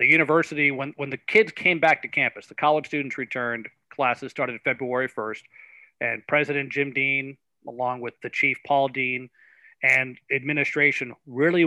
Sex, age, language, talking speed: male, 40-59, English, 160 wpm